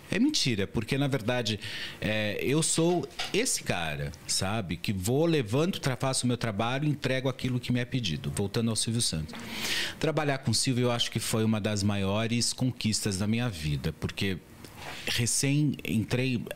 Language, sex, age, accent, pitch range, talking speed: Portuguese, male, 40-59, Brazilian, 95-135 Hz, 170 wpm